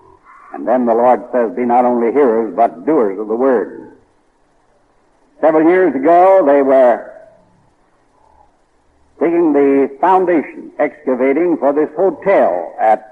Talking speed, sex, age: 125 wpm, male, 60-79